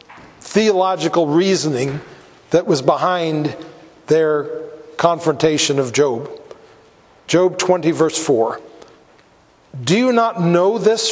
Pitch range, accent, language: 175-245 Hz, American, English